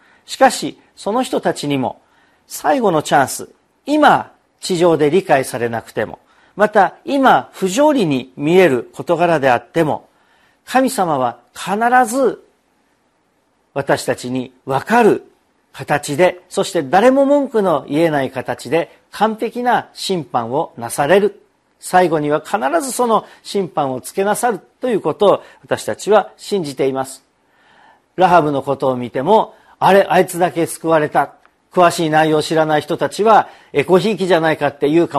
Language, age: Japanese, 50-69